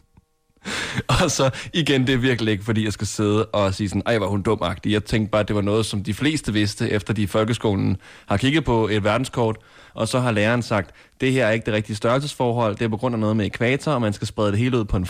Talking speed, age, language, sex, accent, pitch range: 265 wpm, 20-39, Danish, male, native, 105-125 Hz